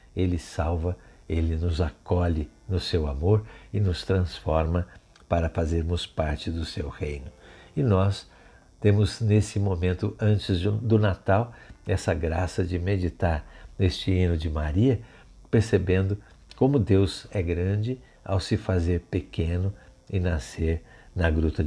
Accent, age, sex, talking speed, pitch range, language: Brazilian, 60-79, male, 125 wpm, 85-100 Hz, Portuguese